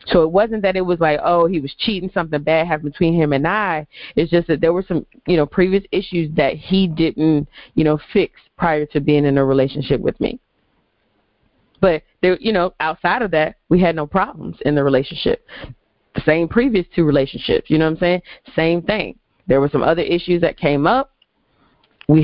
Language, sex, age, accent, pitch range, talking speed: English, female, 30-49, American, 145-175 Hz, 210 wpm